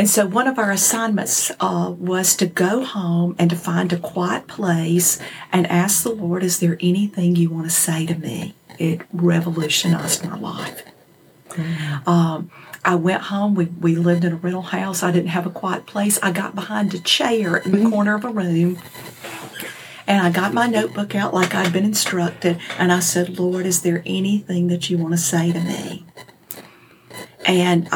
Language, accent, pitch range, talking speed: English, American, 170-190 Hz, 185 wpm